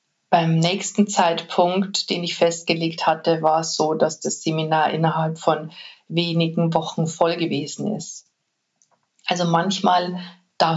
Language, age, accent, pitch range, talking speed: German, 50-69, German, 165-195 Hz, 130 wpm